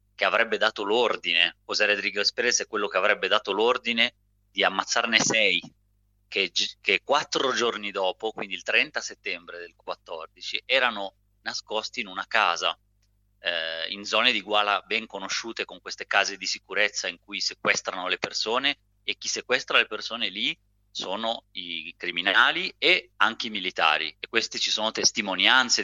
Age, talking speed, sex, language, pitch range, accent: 30-49, 155 wpm, male, Italian, 95-110 Hz, native